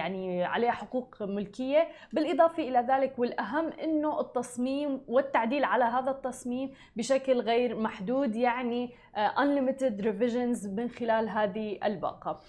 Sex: female